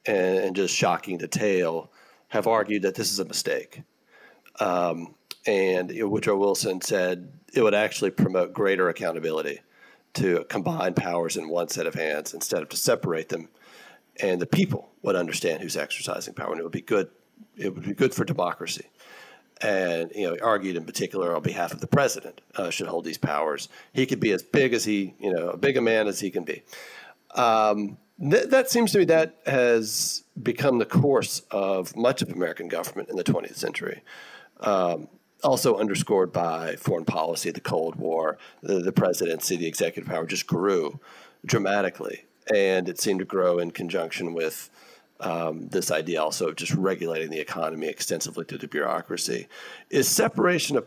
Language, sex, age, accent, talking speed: English, male, 40-59, American, 180 wpm